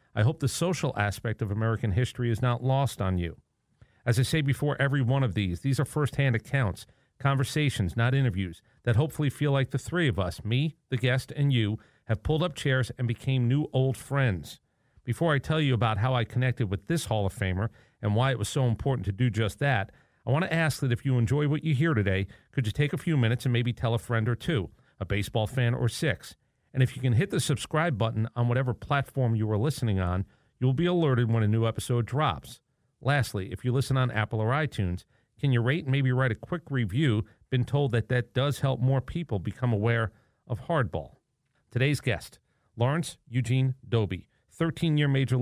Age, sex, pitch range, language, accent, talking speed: 40-59, male, 115-140 Hz, English, American, 215 wpm